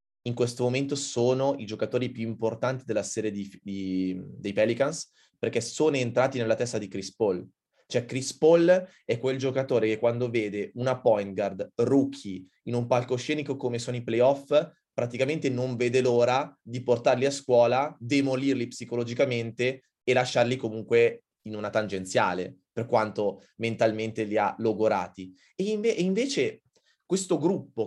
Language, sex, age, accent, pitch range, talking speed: Italian, male, 20-39, native, 115-145 Hz, 150 wpm